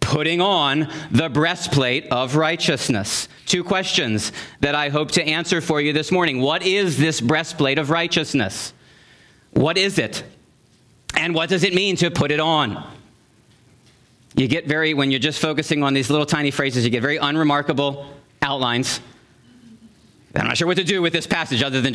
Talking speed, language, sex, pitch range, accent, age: 170 wpm, English, male, 135-170 Hz, American, 40-59